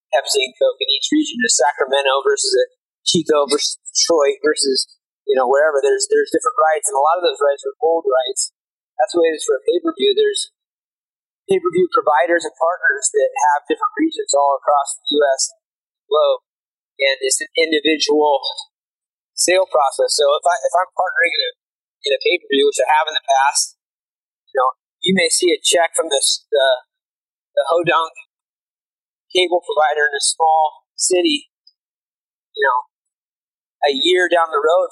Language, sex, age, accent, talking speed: English, male, 30-49, American, 180 wpm